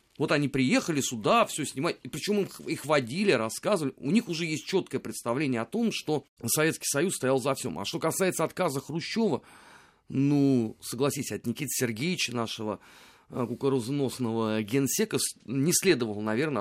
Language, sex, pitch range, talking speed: Russian, male, 120-175 Hz, 145 wpm